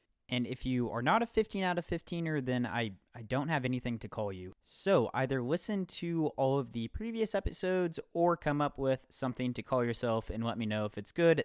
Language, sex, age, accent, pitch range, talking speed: English, male, 20-39, American, 115-155 Hz, 225 wpm